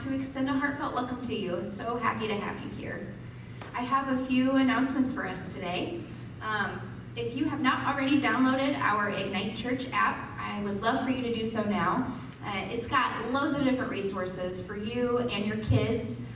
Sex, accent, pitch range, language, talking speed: female, American, 205-270 Hz, English, 195 wpm